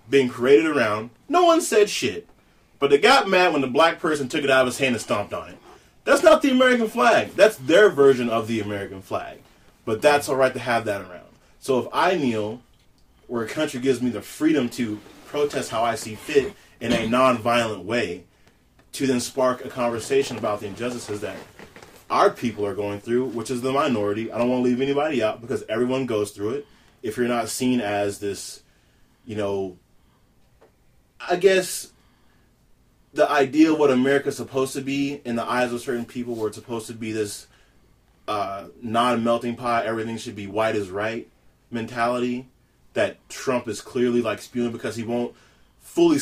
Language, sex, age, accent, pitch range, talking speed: English, male, 20-39, American, 110-135 Hz, 190 wpm